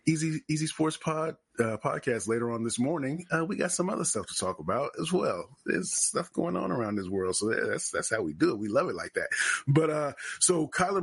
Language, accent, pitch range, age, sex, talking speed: English, American, 125-155 Hz, 30-49, male, 240 wpm